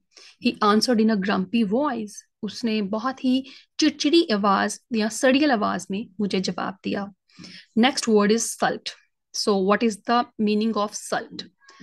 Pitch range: 205-255 Hz